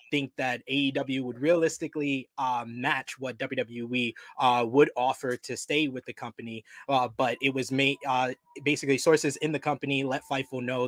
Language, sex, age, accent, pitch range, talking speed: English, male, 20-39, American, 130-150 Hz, 170 wpm